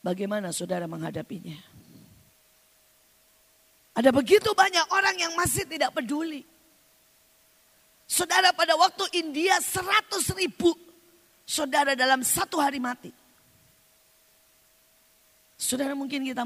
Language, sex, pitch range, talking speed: Indonesian, female, 205-320 Hz, 90 wpm